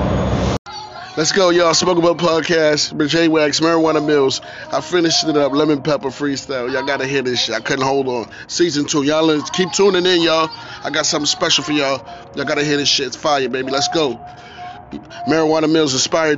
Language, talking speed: English, 195 wpm